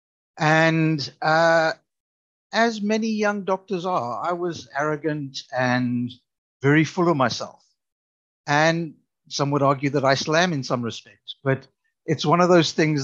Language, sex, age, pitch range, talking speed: English, male, 60-79, 130-165 Hz, 145 wpm